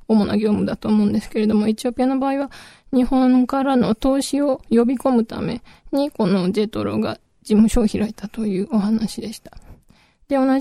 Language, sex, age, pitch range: Japanese, female, 20-39, 215-250 Hz